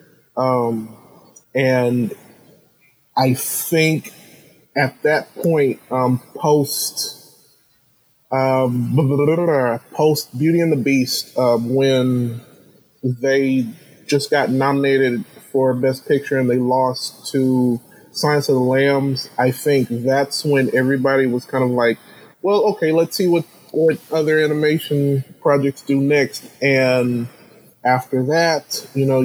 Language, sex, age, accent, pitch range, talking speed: English, male, 20-39, American, 125-145 Hz, 115 wpm